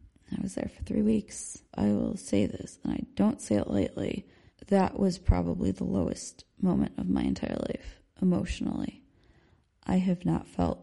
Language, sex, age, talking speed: English, female, 20-39, 170 wpm